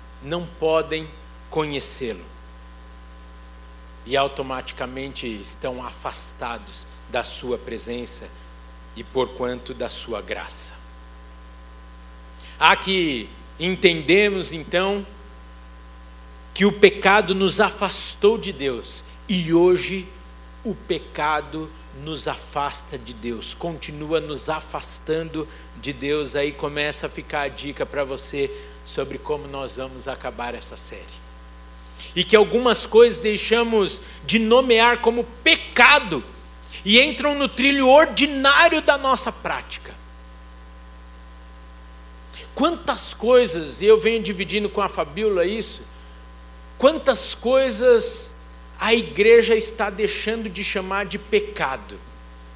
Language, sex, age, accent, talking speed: Portuguese, male, 60-79, Brazilian, 105 wpm